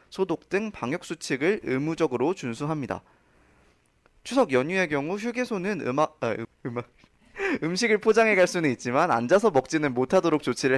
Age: 20-39